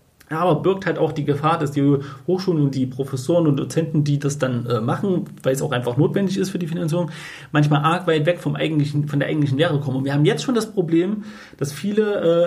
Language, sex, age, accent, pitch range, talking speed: German, male, 30-49, German, 145-175 Hz, 230 wpm